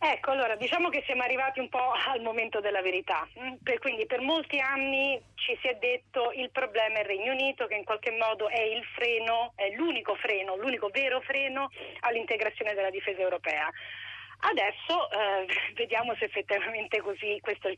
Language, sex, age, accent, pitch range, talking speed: Italian, female, 30-49, native, 210-265 Hz, 180 wpm